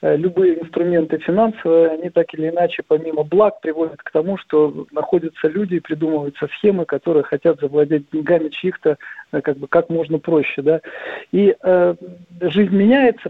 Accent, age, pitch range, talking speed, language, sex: native, 50-69, 160-190 Hz, 140 wpm, Russian, male